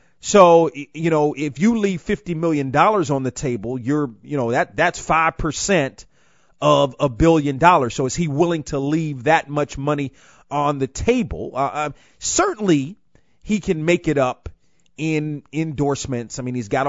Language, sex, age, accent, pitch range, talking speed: English, male, 40-59, American, 135-170 Hz, 170 wpm